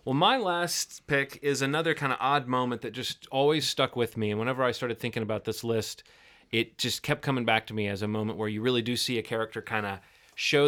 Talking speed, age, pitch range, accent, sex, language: 245 wpm, 30-49, 110-130 Hz, American, male, English